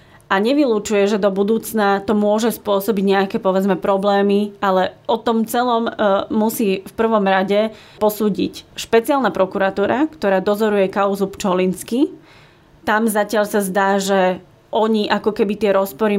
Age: 20-39